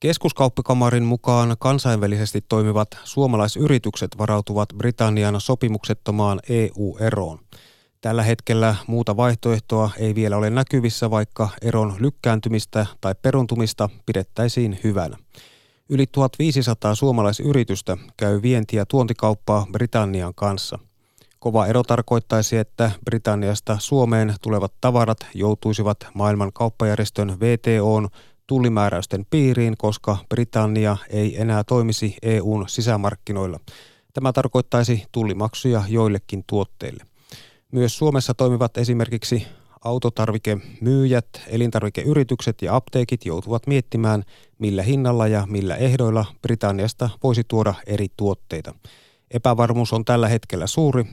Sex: male